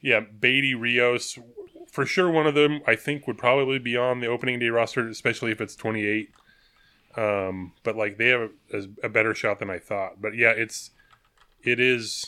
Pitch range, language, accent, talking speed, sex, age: 105-125 Hz, English, American, 195 wpm, male, 20-39